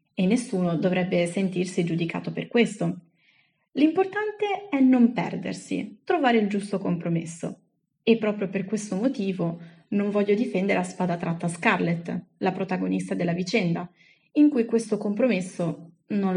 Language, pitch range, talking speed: Italian, 170-220 Hz, 130 wpm